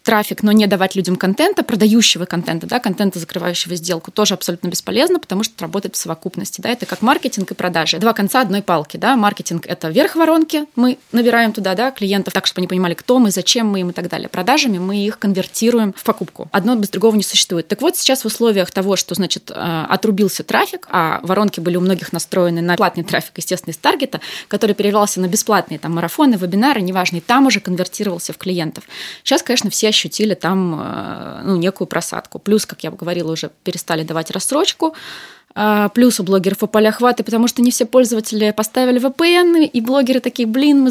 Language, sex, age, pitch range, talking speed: Russian, female, 20-39, 185-245 Hz, 195 wpm